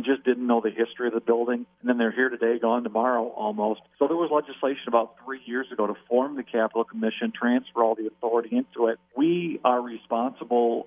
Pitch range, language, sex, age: 115-130 Hz, English, male, 50-69